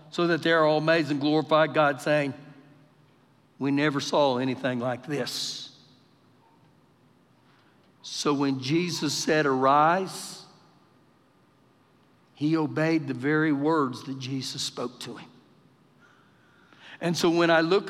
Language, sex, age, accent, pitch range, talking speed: English, male, 60-79, American, 155-220 Hz, 115 wpm